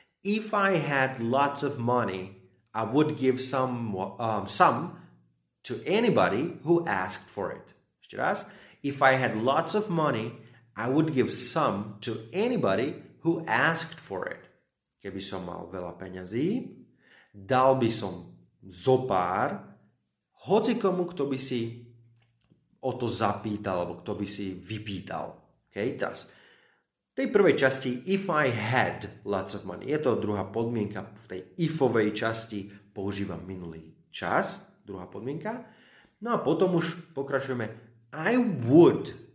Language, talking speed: Slovak, 135 wpm